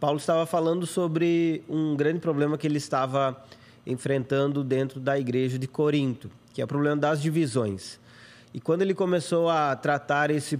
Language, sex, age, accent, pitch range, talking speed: Portuguese, male, 20-39, Brazilian, 140-175 Hz, 165 wpm